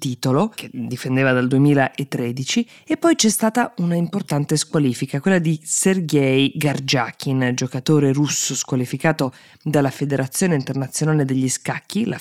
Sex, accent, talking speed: female, native, 125 wpm